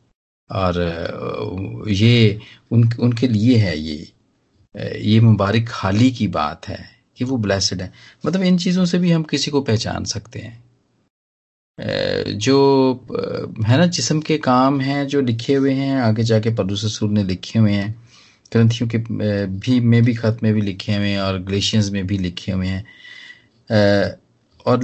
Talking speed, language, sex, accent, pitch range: 160 wpm, Hindi, male, native, 100-125 Hz